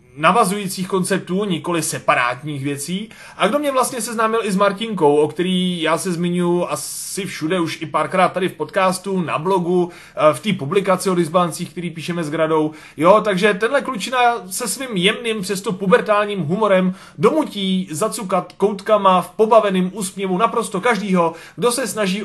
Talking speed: 155 wpm